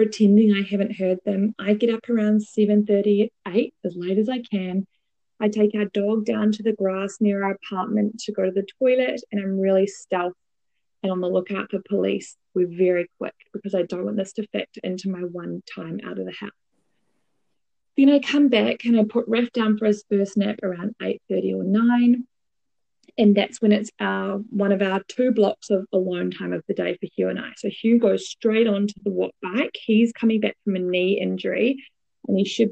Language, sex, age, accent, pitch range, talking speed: English, female, 20-39, Australian, 190-230 Hz, 215 wpm